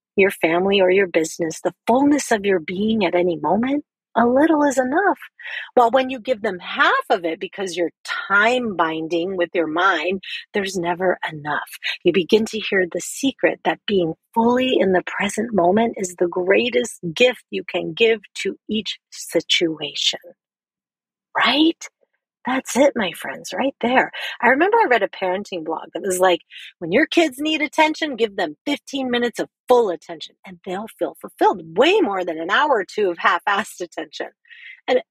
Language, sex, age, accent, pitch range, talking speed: English, female, 40-59, American, 180-265 Hz, 175 wpm